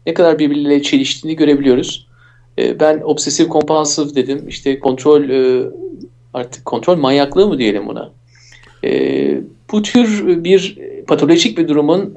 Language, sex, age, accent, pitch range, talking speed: Turkish, male, 50-69, native, 140-190 Hz, 115 wpm